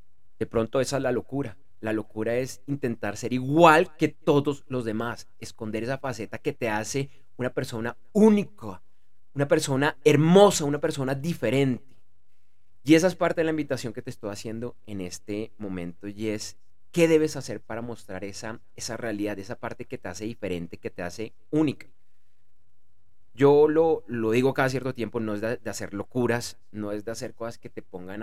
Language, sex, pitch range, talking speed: Spanish, male, 105-145 Hz, 185 wpm